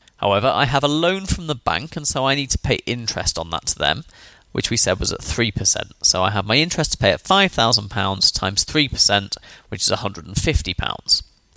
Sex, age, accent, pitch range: male, 30-49, British, 105-155 Hz